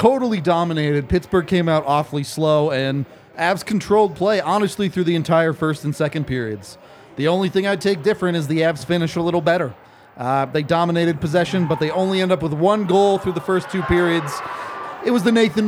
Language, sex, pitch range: English, male, 150-190 Hz